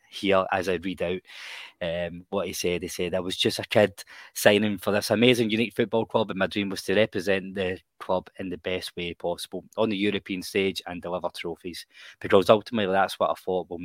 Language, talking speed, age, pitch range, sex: English, 215 wpm, 20-39, 85-100 Hz, male